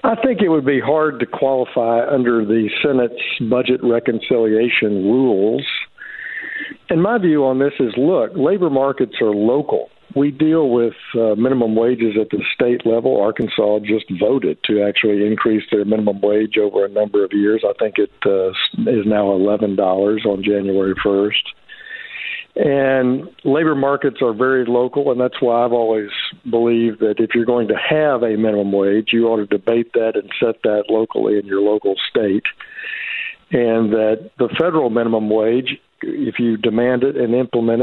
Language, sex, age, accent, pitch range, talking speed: English, male, 60-79, American, 110-140 Hz, 165 wpm